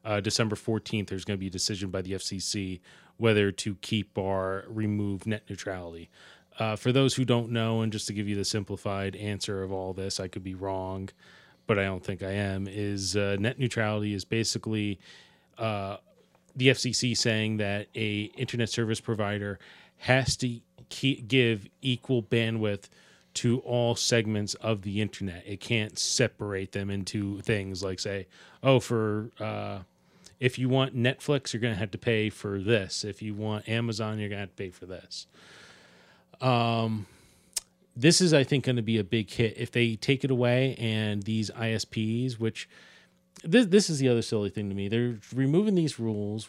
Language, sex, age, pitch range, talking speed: English, male, 30-49, 100-125 Hz, 180 wpm